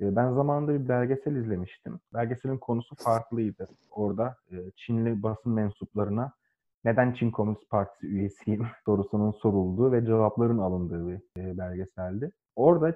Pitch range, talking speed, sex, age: 100-125 Hz, 115 wpm, male, 30-49